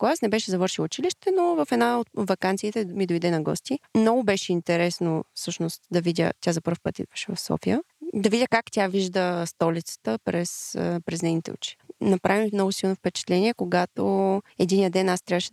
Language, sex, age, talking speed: Bulgarian, female, 20-39, 180 wpm